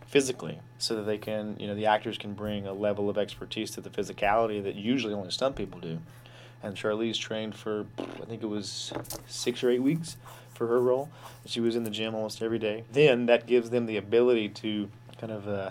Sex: male